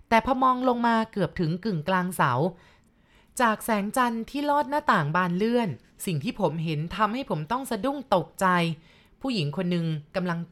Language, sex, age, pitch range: Thai, female, 20-39, 160-210 Hz